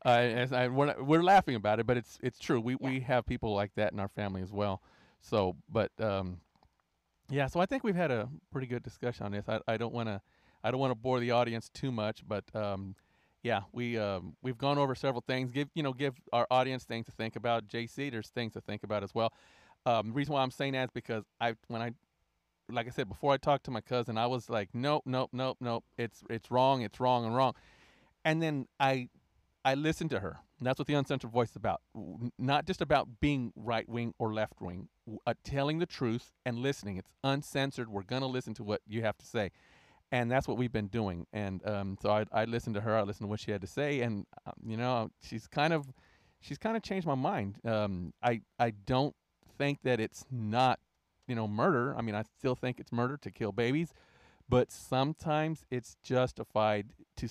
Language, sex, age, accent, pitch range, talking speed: English, male, 40-59, American, 110-130 Hz, 225 wpm